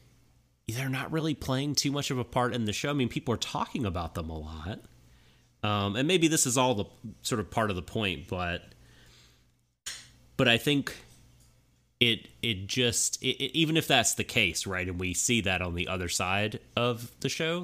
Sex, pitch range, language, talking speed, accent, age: male, 90-120 Hz, English, 195 wpm, American, 30-49